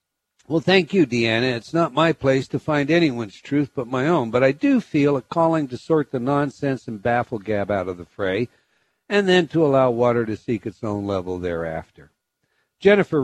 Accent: American